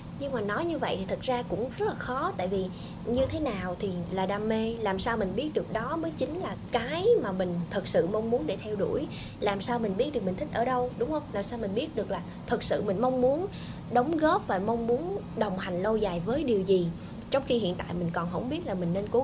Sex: female